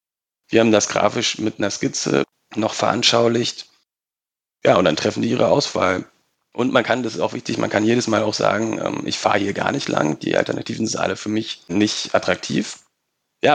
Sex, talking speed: male, 200 wpm